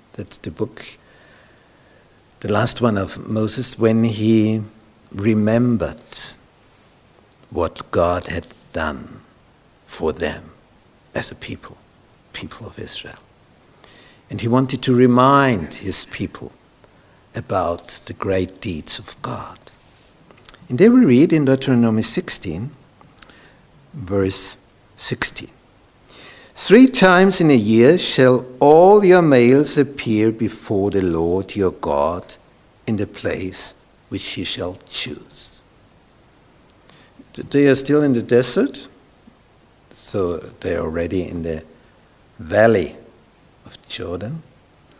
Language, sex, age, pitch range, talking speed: English, male, 60-79, 100-135 Hz, 110 wpm